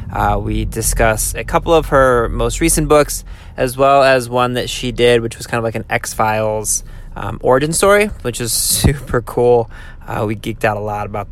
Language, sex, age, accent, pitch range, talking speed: English, male, 20-39, American, 105-125 Hz, 195 wpm